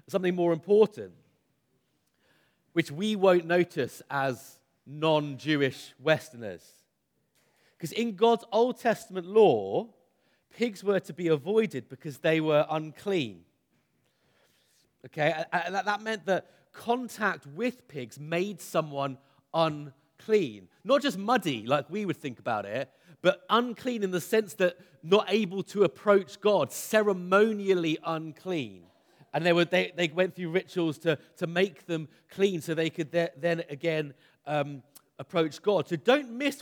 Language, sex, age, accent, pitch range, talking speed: English, male, 30-49, British, 160-215 Hz, 135 wpm